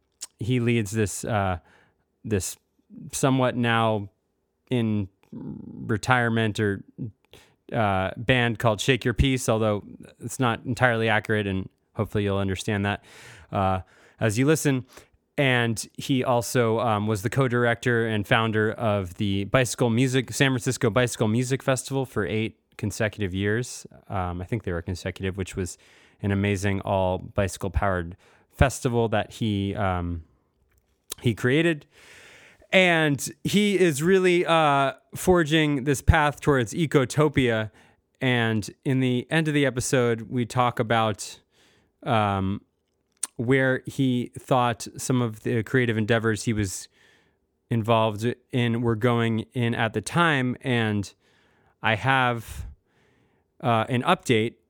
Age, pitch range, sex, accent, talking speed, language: 20-39, 105-130 Hz, male, American, 125 wpm, English